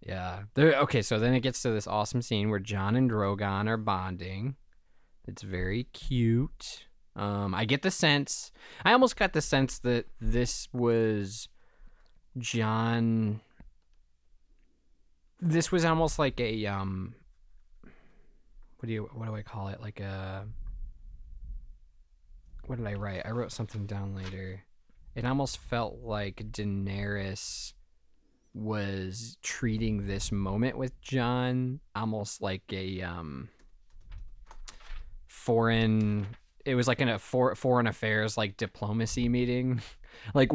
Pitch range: 95-120 Hz